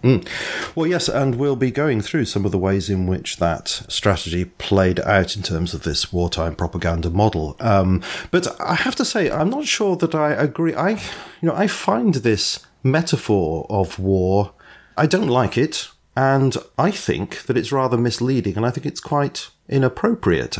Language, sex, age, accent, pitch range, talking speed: English, male, 40-59, British, 95-130 Hz, 200 wpm